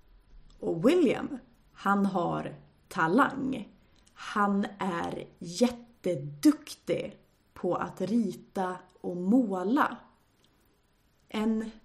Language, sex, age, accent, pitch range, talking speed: Swedish, female, 30-49, native, 175-235 Hz, 70 wpm